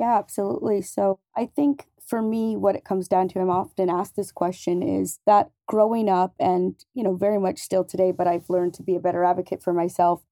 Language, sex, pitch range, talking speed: English, female, 180-205 Hz, 220 wpm